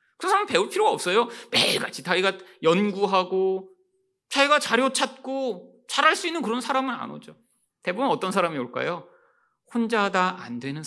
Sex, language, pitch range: male, Korean, 165-270 Hz